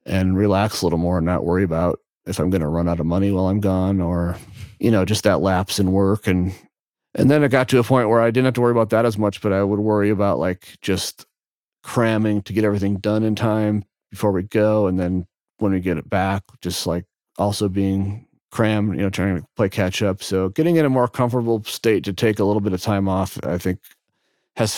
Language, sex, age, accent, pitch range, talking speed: English, male, 40-59, American, 95-110 Hz, 240 wpm